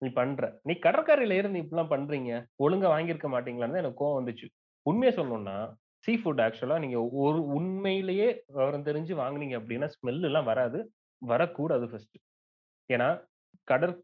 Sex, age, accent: male, 30-49, native